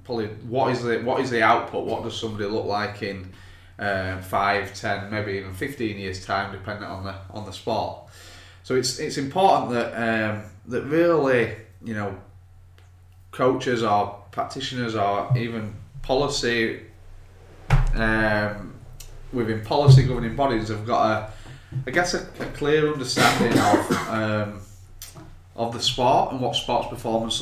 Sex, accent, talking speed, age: male, British, 145 wpm, 20-39